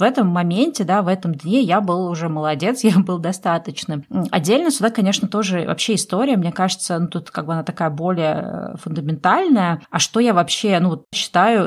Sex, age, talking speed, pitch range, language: female, 20-39, 185 wpm, 175-215 Hz, Russian